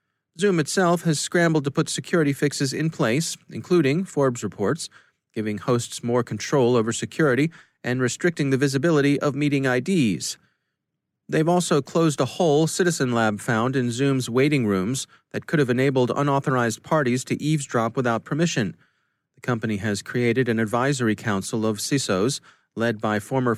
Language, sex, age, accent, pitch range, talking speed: English, male, 30-49, American, 115-150 Hz, 155 wpm